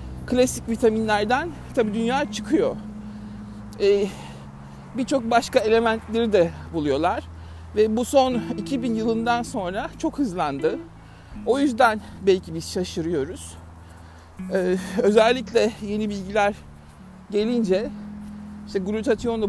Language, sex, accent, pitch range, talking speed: Turkish, male, native, 145-225 Hz, 100 wpm